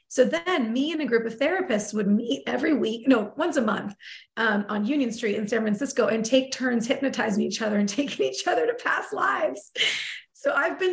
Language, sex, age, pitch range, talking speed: English, female, 30-49, 210-265 Hz, 215 wpm